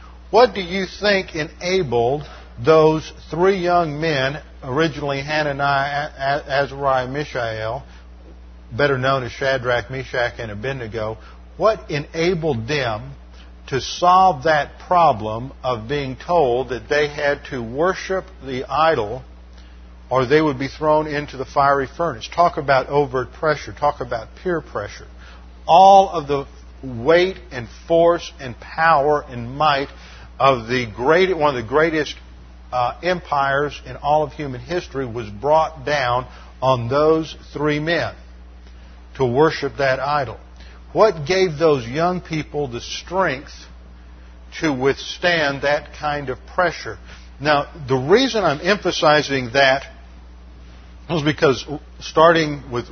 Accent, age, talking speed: American, 50-69, 125 wpm